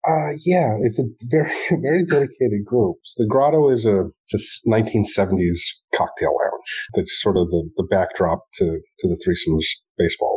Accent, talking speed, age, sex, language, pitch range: American, 170 wpm, 30-49, male, English, 90-110 Hz